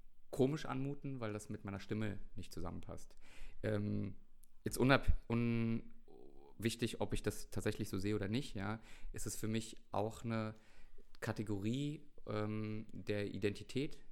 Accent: German